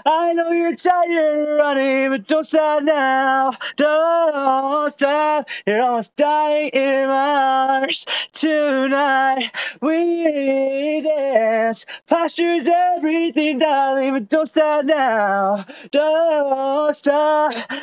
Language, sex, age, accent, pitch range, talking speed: English, male, 20-39, American, 265-315 Hz, 100 wpm